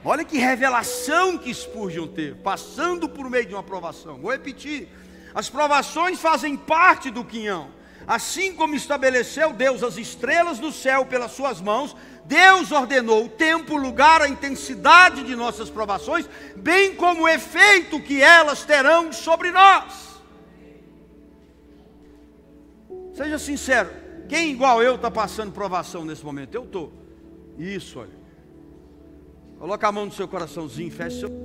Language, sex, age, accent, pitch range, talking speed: Portuguese, male, 60-79, Brazilian, 195-305 Hz, 135 wpm